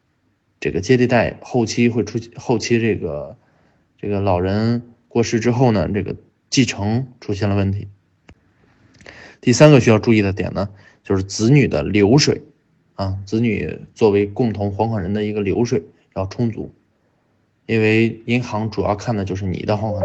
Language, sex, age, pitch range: Chinese, male, 20-39, 105-130 Hz